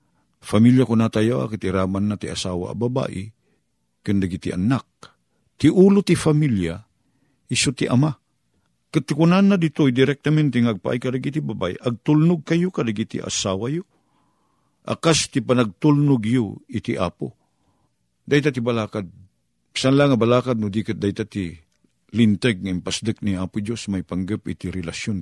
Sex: male